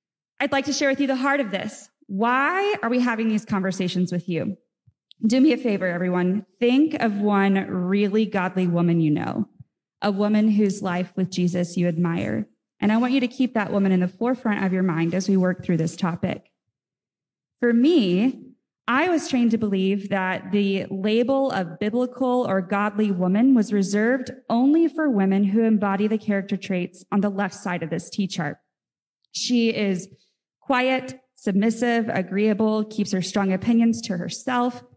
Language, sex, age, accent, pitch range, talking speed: English, female, 20-39, American, 190-240 Hz, 175 wpm